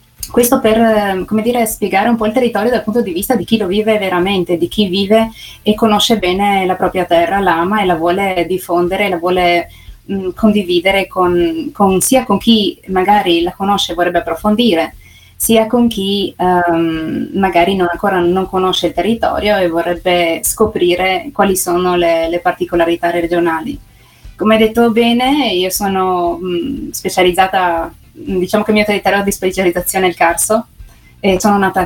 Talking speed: 165 wpm